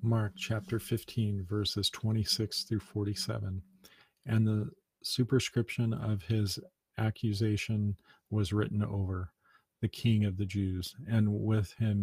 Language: English